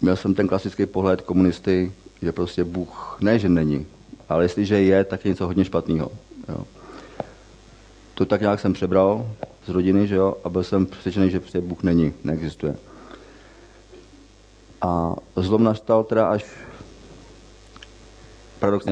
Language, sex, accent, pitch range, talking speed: Czech, male, native, 90-105 Hz, 145 wpm